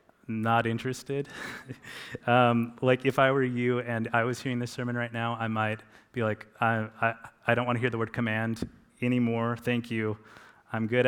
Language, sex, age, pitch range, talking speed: English, male, 30-49, 105-120 Hz, 190 wpm